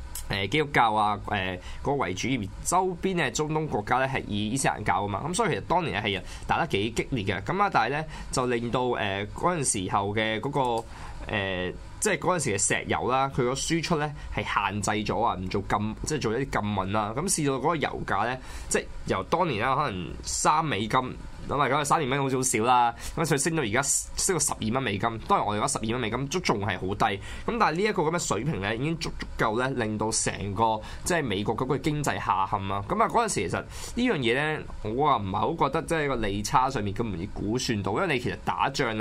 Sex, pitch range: male, 105-145 Hz